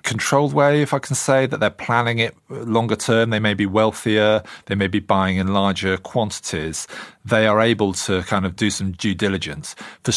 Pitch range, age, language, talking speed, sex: 90-110 Hz, 40-59, English, 200 wpm, male